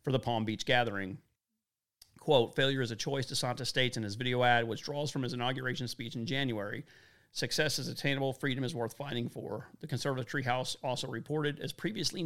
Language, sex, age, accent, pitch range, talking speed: English, male, 40-59, American, 115-135 Hz, 190 wpm